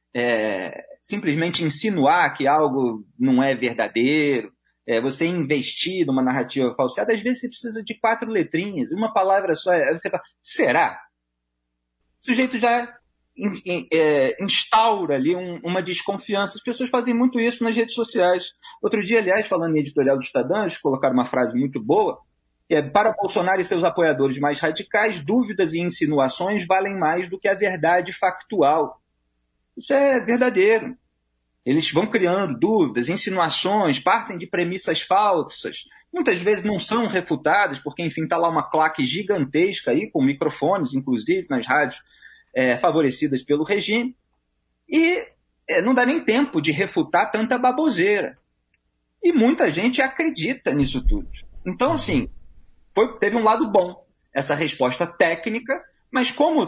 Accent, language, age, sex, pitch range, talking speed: Brazilian, Portuguese, 30-49, male, 150-230 Hz, 150 wpm